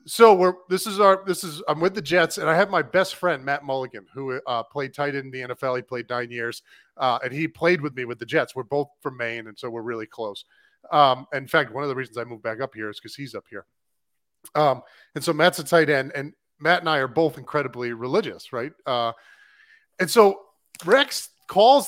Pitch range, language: 130-180 Hz, English